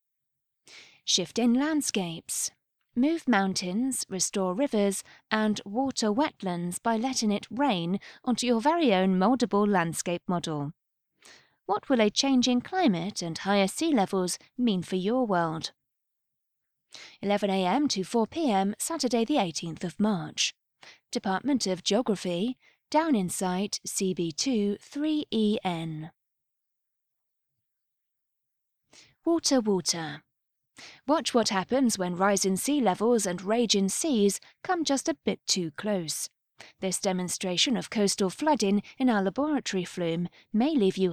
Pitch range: 185-250 Hz